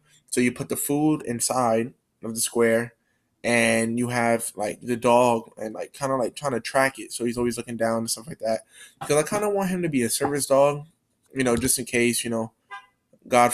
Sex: male